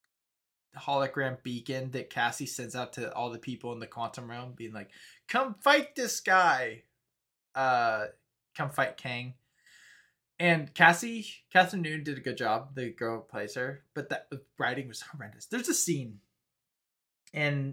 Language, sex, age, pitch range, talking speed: English, male, 20-39, 125-190 Hz, 155 wpm